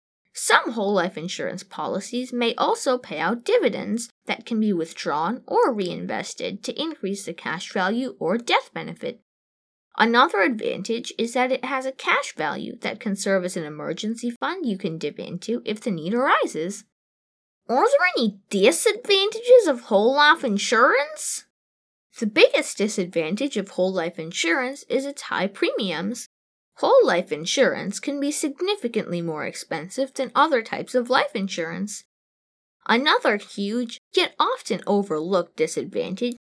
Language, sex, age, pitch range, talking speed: English, female, 20-39, 185-265 Hz, 145 wpm